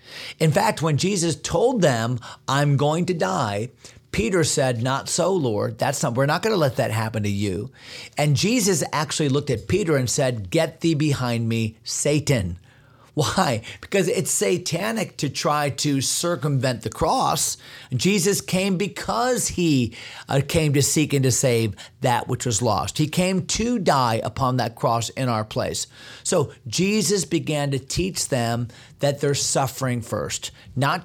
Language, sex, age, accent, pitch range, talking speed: English, male, 40-59, American, 120-165 Hz, 160 wpm